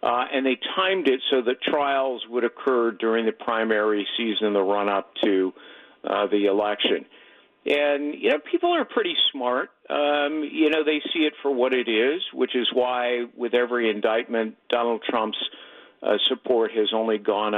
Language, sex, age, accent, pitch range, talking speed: English, male, 50-69, American, 110-150 Hz, 170 wpm